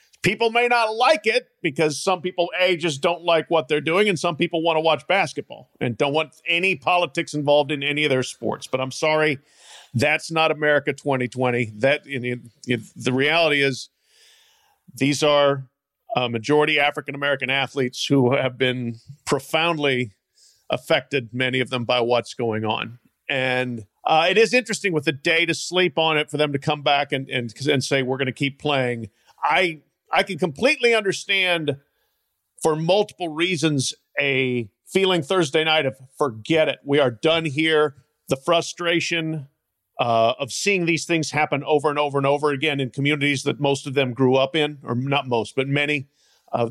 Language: English